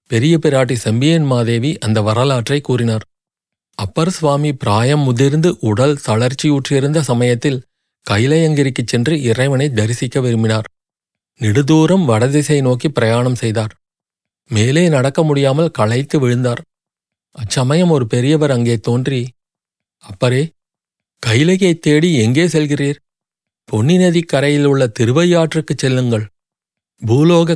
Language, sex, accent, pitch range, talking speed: Tamil, male, native, 120-160 Hz, 100 wpm